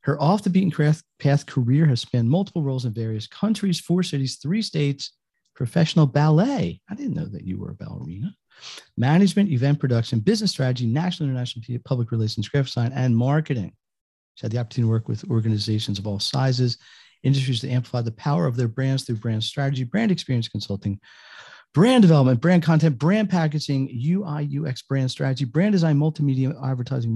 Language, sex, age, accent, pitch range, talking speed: English, male, 40-59, American, 115-150 Hz, 170 wpm